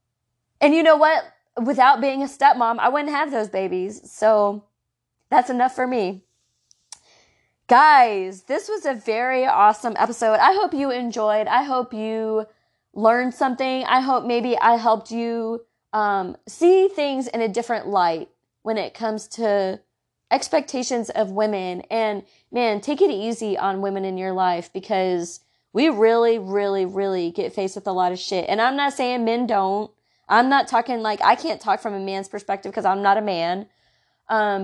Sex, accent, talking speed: female, American, 170 wpm